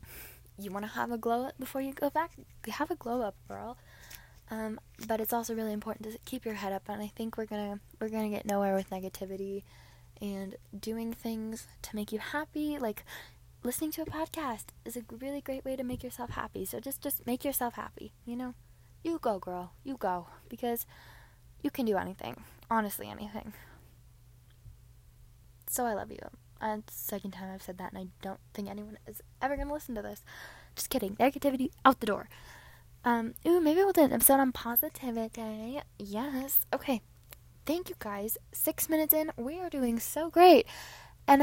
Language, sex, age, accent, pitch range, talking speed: English, female, 10-29, American, 210-275 Hz, 190 wpm